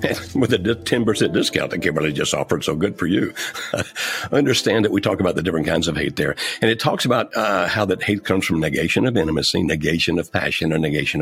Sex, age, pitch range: male, 60-79, 85-110 Hz